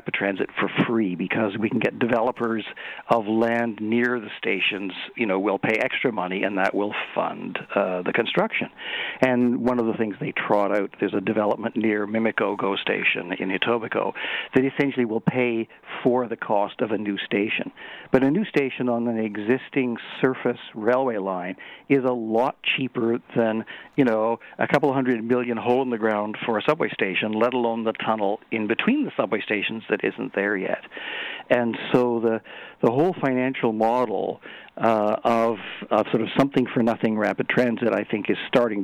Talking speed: 180 wpm